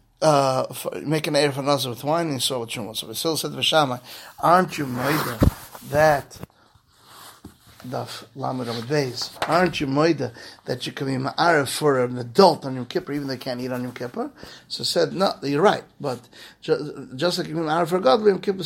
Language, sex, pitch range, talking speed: English, male, 130-165 Hz, 205 wpm